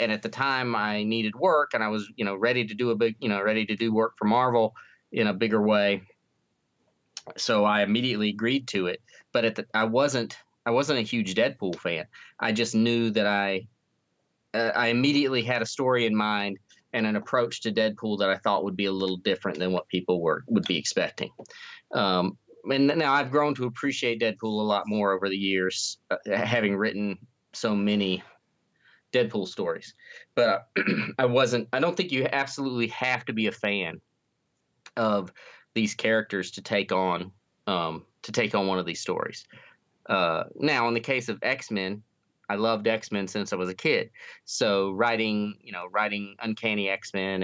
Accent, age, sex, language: American, 30-49, male, English